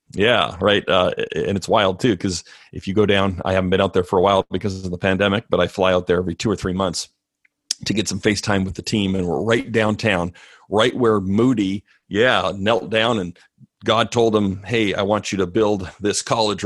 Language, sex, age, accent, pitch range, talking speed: English, male, 40-59, American, 90-115 Hz, 230 wpm